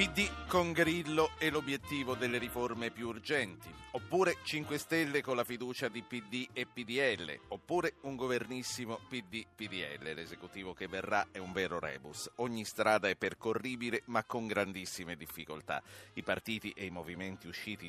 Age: 50-69